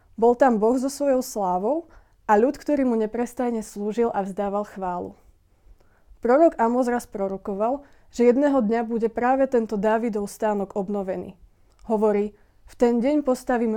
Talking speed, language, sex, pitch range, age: 140 wpm, Slovak, female, 205-240 Hz, 20-39